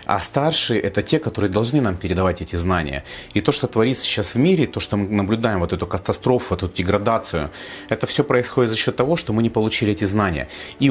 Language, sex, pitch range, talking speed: Russian, male, 95-115 Hz, 215 wpm